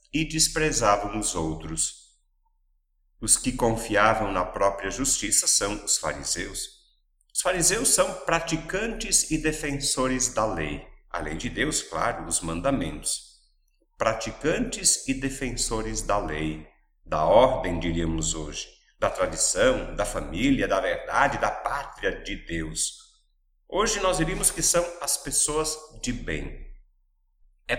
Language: Portuguese